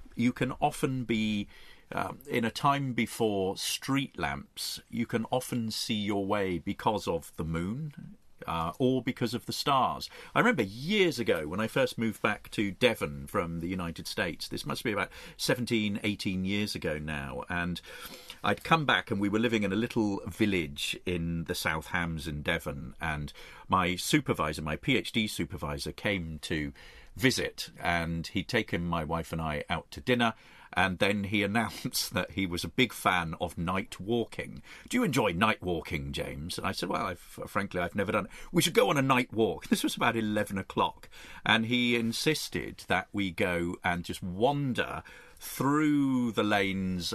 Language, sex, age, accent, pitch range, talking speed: English, male, 40-59, British, 85-120 Hz, 185 wpm